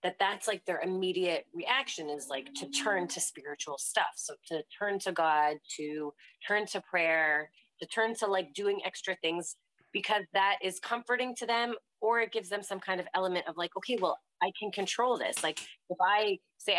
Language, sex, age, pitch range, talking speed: English, female, 30-49, 170-215 Hz, 195 wpm